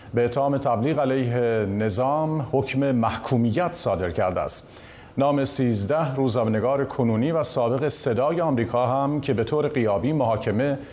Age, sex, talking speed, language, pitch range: 50-69, male, 130 wpm, Persian, 105-135 Hz